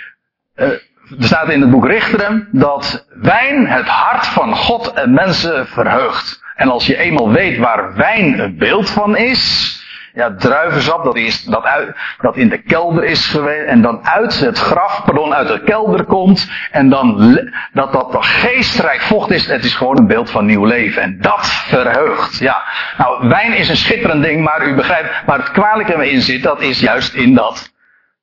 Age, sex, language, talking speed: 60-79, male, Dutch, 190 wpm